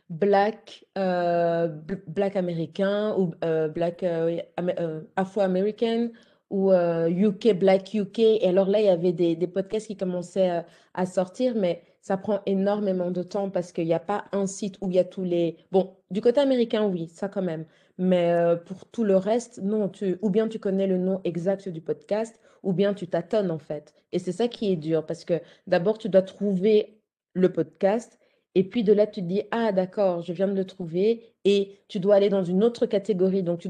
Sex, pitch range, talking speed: female, 170-200 Hz, 210 wpm